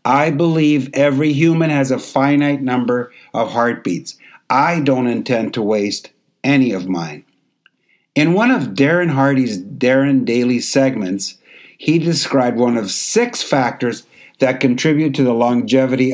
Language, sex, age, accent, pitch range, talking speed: English, male, 60-79, American, 115-140 Hz, 140 wpm